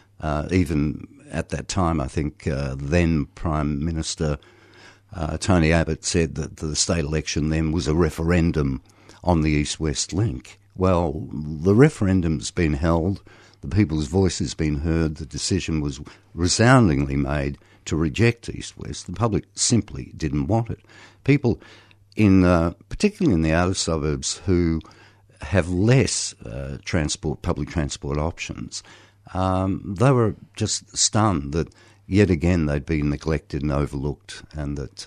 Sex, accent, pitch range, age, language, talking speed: male, Australian, 75-100 Hz, 60-79, English, 140 wpm